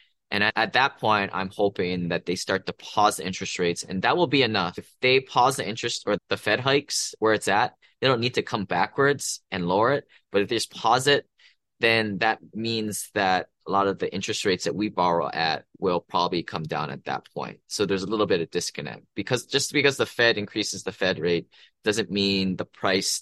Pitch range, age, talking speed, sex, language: 90-110 Hz, 20-39, 225 wpm, male, English